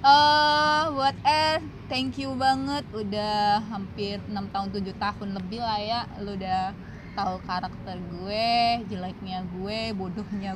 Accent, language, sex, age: native, Indonesian, female, 20-39